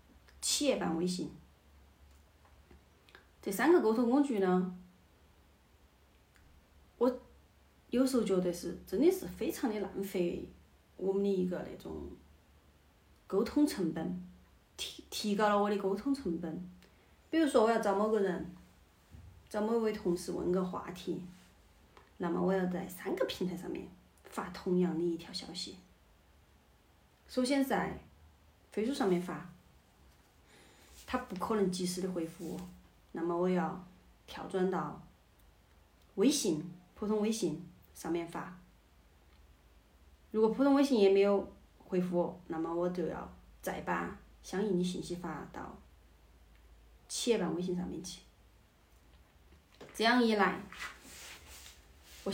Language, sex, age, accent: Chinese, female, 30-49, native